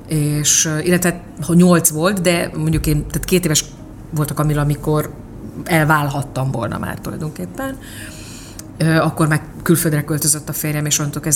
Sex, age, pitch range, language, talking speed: female, 30-49, 145-170 Hz, Hungarian, 145 wpm